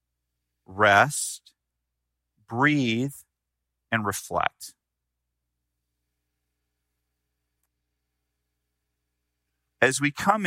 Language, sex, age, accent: English, male, 40-59, American